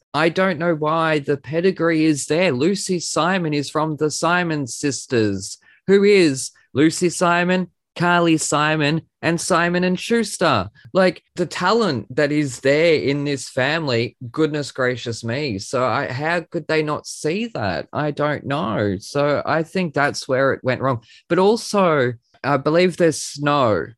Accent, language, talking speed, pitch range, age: Australian, English, 155 wpm, 115-160 Hz, 20-39